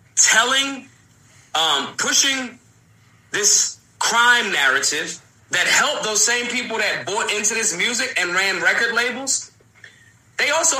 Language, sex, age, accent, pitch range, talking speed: English, male, 30-49, American, 205-265 Hz, 120 wpm